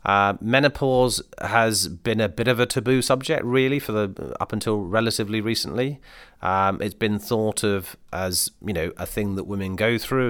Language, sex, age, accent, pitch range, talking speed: English, male, 30-49, British, 95-120 Hz, 180 wpm